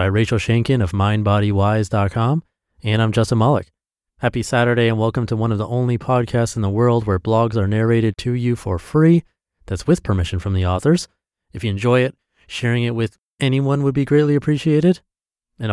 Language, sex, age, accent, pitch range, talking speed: English, male, 30-49, American, 95-120 Hz, 185 wpm